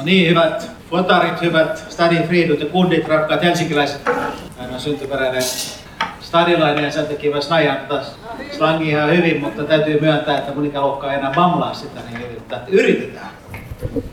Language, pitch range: Finnish, 150-175 Hz